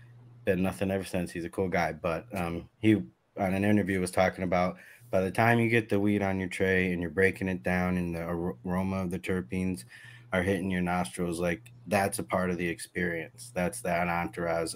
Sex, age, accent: male, 20-39, American